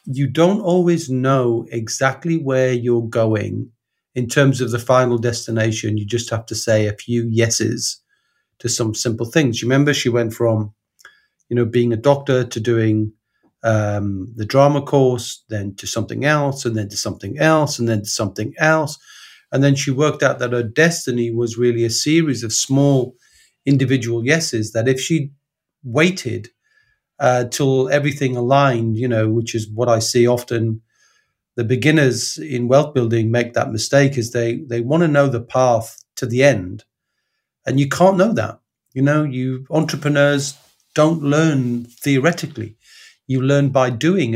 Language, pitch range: English, 115-145 Hz